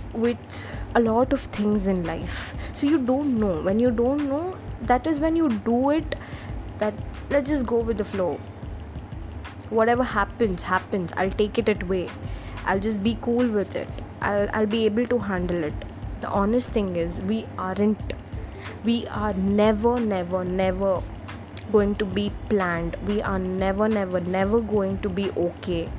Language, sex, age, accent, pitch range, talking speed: English, female, 20-39, Indian, 165-230 Hz, 165 wpm